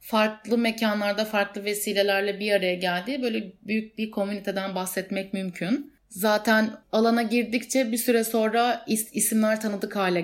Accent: native